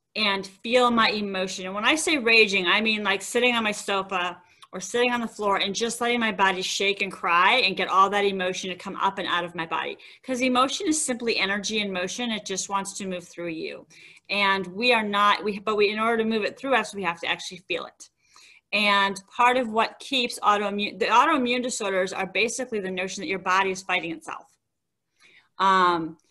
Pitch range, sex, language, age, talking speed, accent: 195-240 Hz, female, English, 30-49, 220 wpm, American